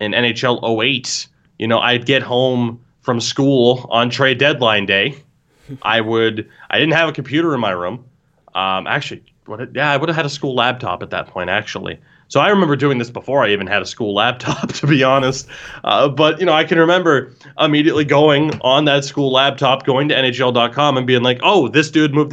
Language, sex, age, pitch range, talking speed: English, male, 20-39, 115-145 Hz, 205 wpm